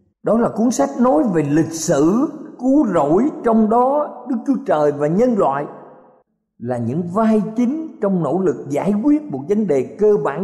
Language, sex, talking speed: Vietnamese, male, 185 wpm